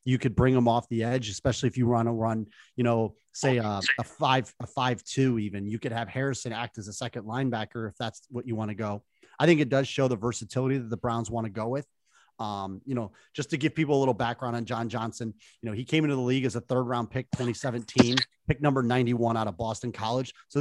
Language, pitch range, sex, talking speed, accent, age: English, 120-145 Hz, male, 255 wpm, American, 30-49